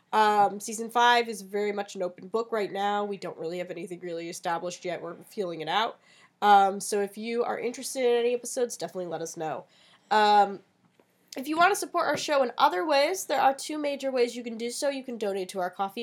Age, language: 10-29, English